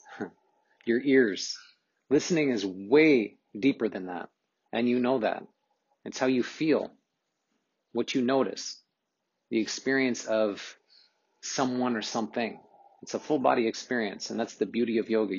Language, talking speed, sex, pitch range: English, 140 wpm, male, 120-155 Hz